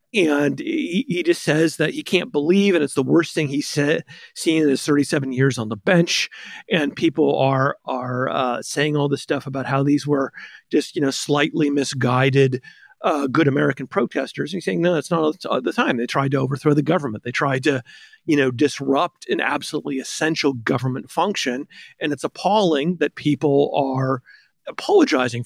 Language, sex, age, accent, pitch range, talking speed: English, male, 40-59, American, 135-165 Hz, 180 wpm